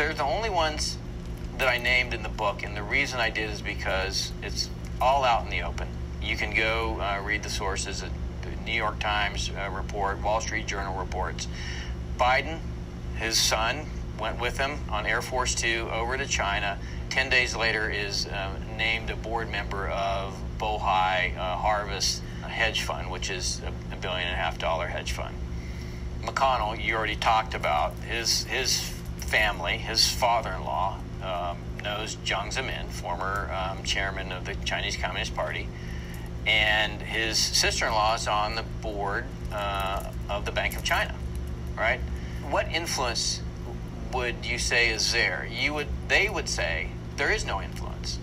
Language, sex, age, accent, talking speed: English, male, 40-59, American, 165 wpm